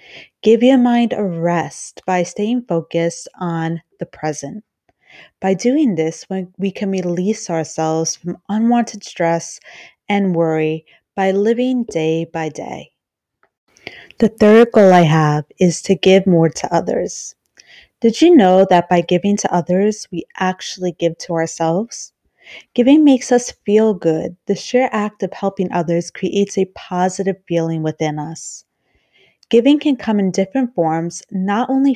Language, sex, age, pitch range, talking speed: English, female, 30-49, 170-225 Hz, 145 wpm